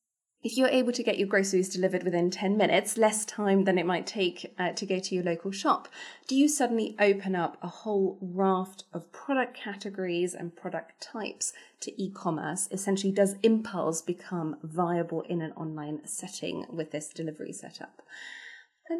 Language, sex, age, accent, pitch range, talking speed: English, female, 20-39, British, 180-230 Hz, 170 wpm